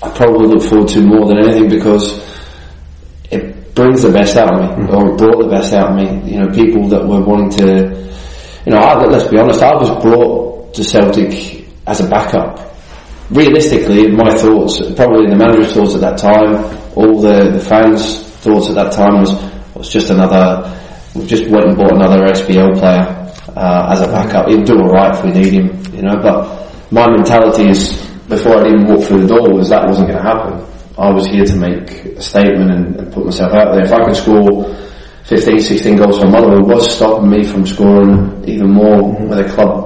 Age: 20-39